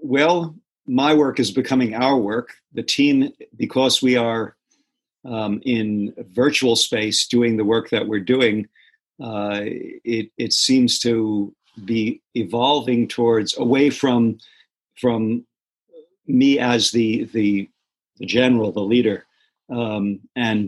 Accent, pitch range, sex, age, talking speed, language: American, 105-125 Hz, male, 50-69, 125 wpm, English